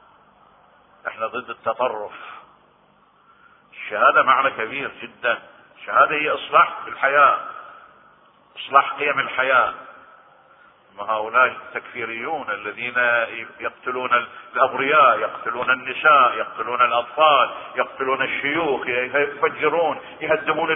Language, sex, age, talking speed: Arabic, male, 50-69, 80 wpm